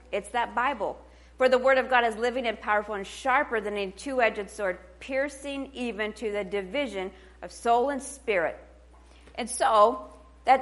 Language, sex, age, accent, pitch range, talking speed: English, female, 40-59, American, 180-245 Hz, 170 wpm